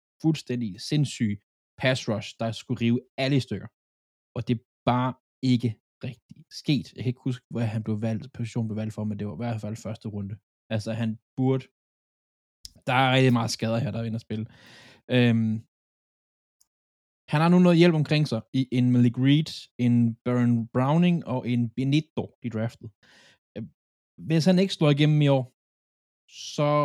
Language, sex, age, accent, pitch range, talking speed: Danish, male, 20-39, native, 110-130 Hz, 170 wpm